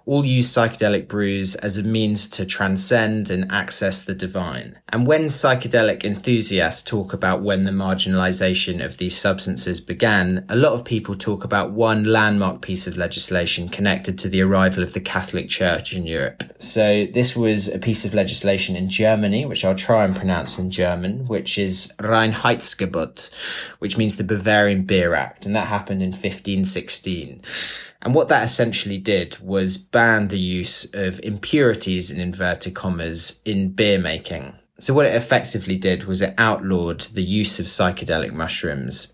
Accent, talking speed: British, 165 wpm